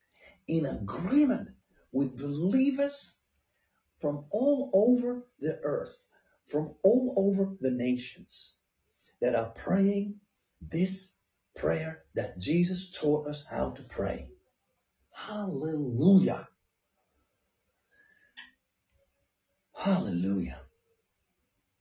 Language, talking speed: English, 75 wpm